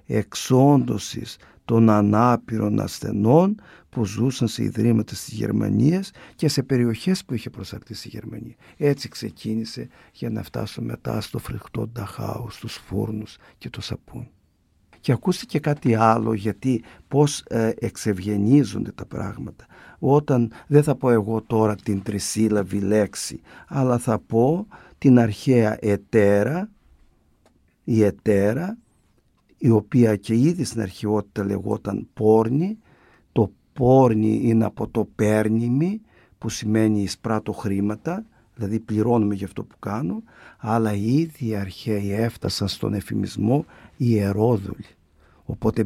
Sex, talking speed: male, 120 wpm